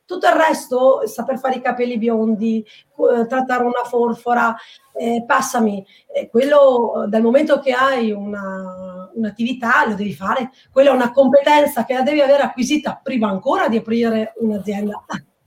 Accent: native